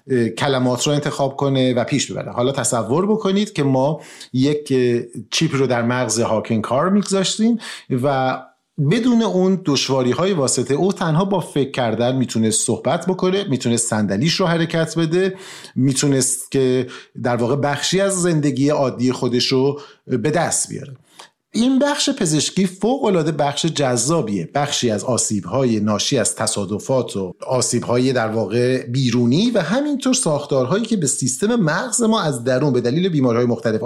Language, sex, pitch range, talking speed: Persian, male, 125-180 Hz, 145 wpm